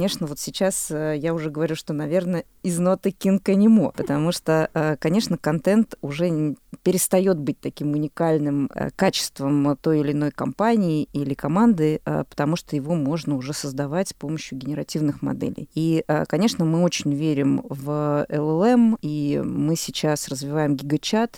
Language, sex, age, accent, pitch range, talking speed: Russian, female, 20-39, native, 145-170 Hz, 145 wpm